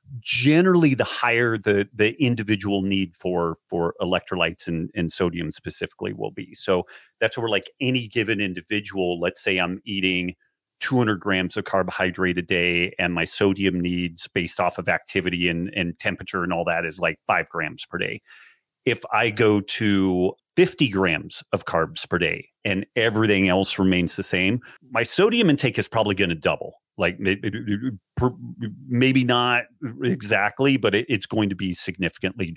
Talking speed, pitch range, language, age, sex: 160 wpm, 95-120 Hz, English, 30-49, male